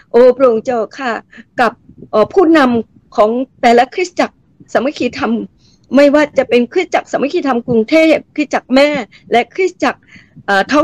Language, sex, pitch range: Thai, female, 240-300 Hz